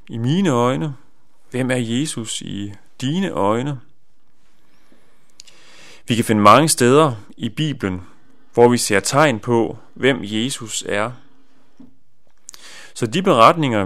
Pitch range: 110-145 Hz